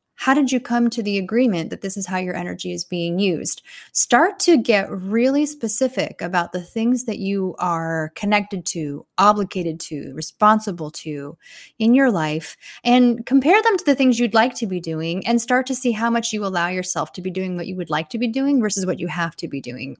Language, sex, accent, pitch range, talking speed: English, female, American, 175-230 Hz, 220 wpm